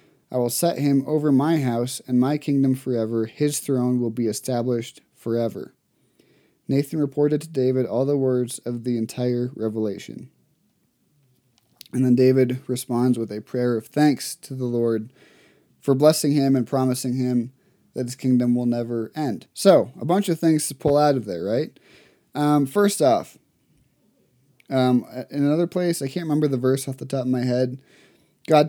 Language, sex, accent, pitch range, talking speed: English, male, American, 125-145 Hz, 170 wpm